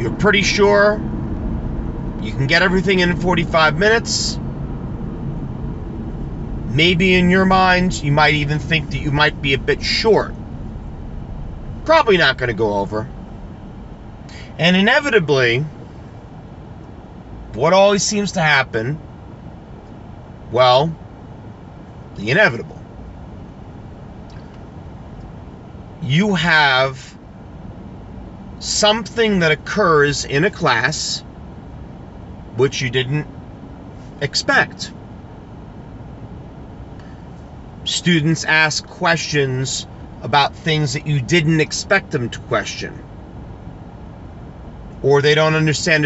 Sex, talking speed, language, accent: male, 90 wpm, English, American